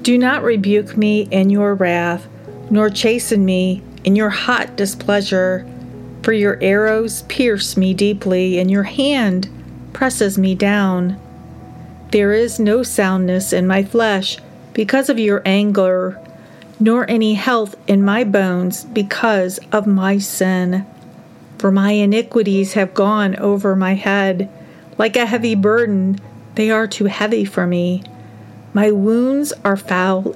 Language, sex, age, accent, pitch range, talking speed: English, female, 40-59, American, 185-220 Hz, 135 wpm